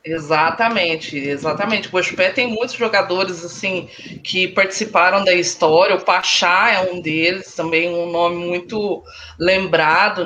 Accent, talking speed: Brazilian, 125 wpm